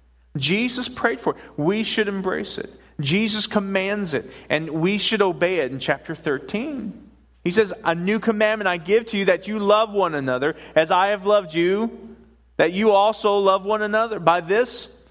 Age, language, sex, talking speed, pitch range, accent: 40-59, English, male, 185 wpm, 160-225 Hz, American